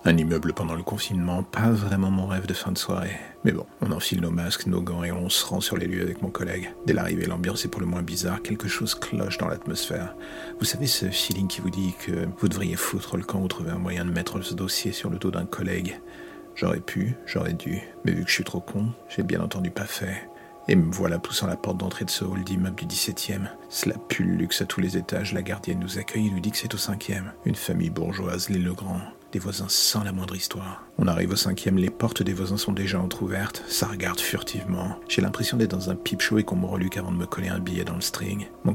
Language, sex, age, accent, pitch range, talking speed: French, male, 40-59, French, 90-100 Hz, 255 wpm